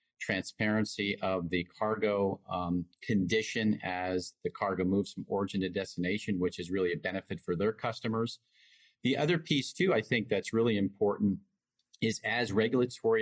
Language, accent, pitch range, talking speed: English, American, 95-115 Hz, 155 wpm